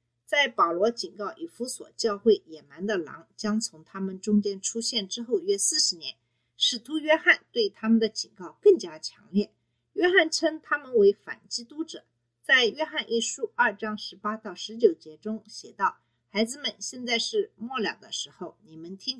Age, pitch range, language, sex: 50-69, 190-315 Hz, Chinese, female